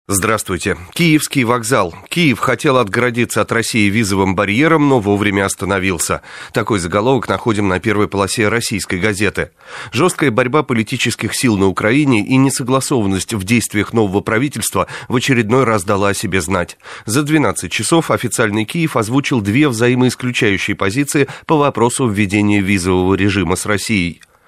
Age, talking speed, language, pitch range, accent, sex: 30-49, 135 wpm, Russian, 100-130 Hz, native, male